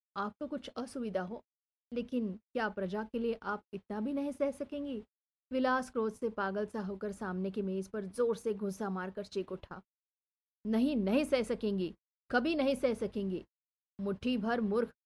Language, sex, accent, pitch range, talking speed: Hindi, female, native, 205-265 Hz, 170 wpm